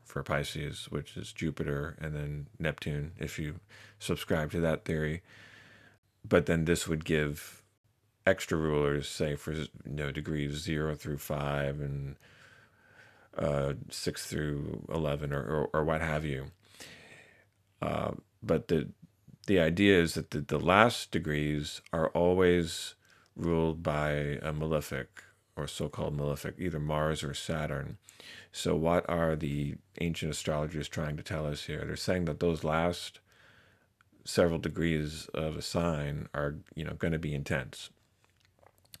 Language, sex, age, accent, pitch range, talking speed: English, male, 40-59, American, 75-85 Hz, 145 wpm